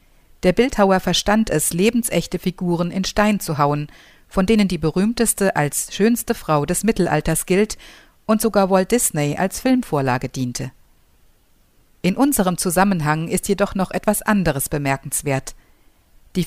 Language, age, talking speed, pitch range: German, 50-69, 135 wpm, 150-200 Hz